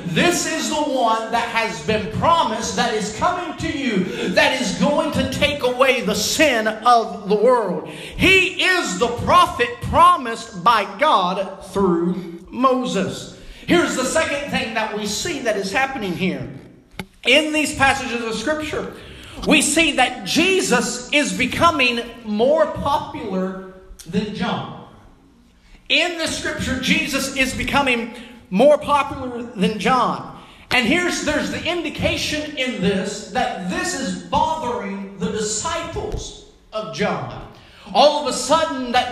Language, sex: English, male